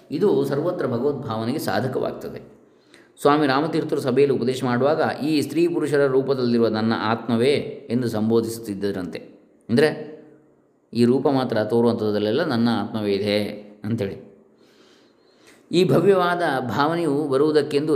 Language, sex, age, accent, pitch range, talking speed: Kannada, male, 20-39, native, 110-145 Hz, 100 wpm